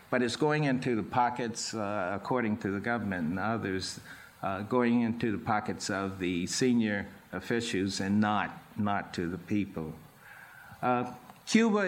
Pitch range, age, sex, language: 110-130 Hz, 60-79, male, English